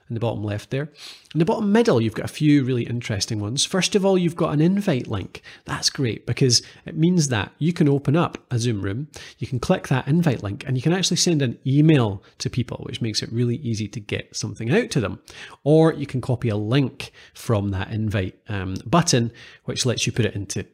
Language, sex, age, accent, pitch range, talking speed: English, male, 30-49, British, 115-150 Hz, 230 wpm